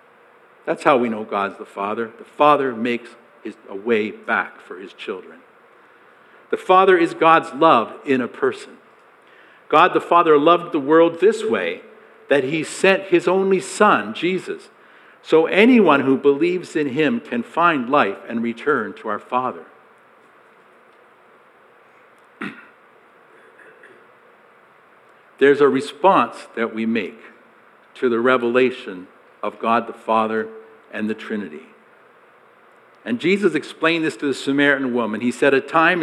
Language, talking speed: English, 135 wpm